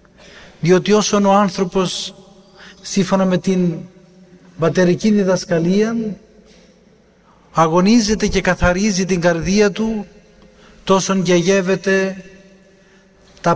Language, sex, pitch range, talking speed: Greek, male, 180-200 Hz, 80 wpm